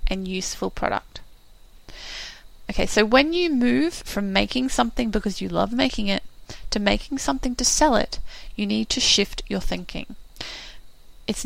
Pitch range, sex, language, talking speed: 190-235 Hz, female, English, 150 wpm